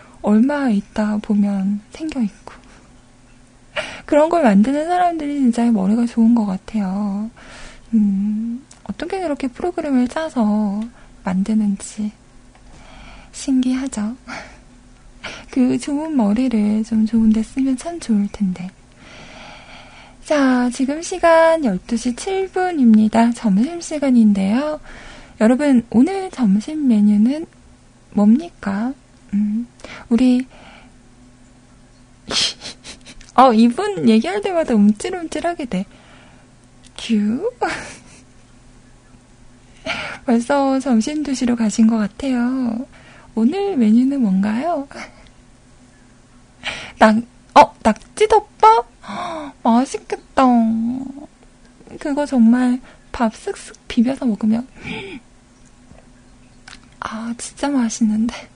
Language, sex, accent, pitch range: Korean, female, native, 210-275 Hz